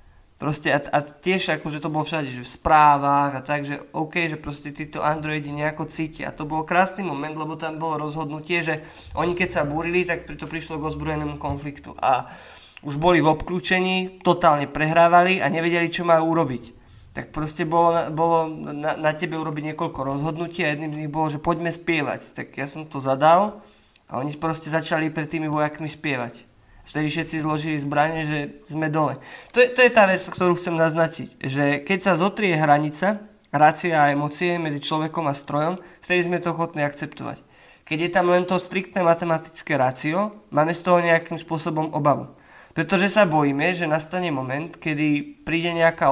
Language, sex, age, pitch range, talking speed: Slovak, male, 20-39, 150-175 Hz, 180 wpm